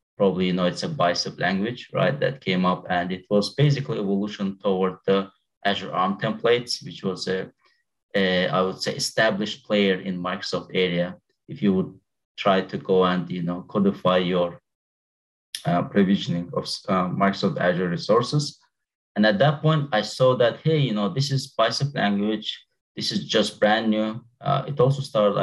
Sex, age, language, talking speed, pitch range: male, 30-49, English, 175 wpm, 95-125 Hz